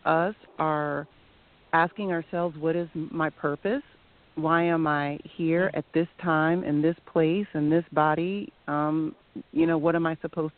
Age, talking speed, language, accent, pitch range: 40-59, 160 wpm, English, American, 145-165 Hz